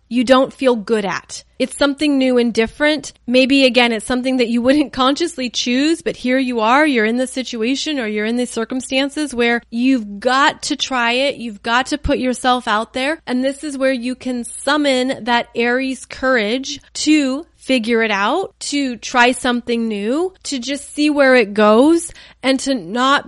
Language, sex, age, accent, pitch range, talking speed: English, female, 30-49, American, 225-275 Hz, 185 wpm